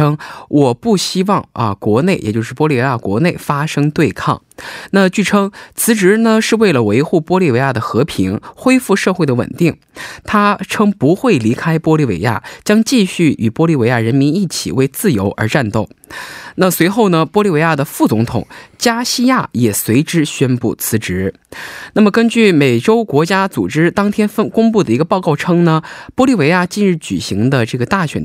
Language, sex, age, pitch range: Korean, male, 20-39, 120-195 Hz